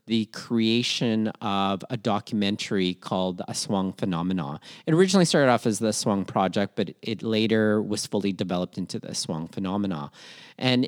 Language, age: English, 40-59